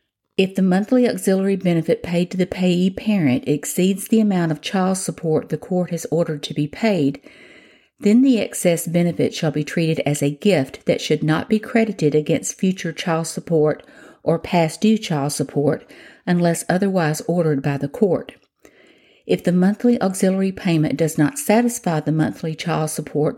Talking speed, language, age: 165 wpm, English, 50-69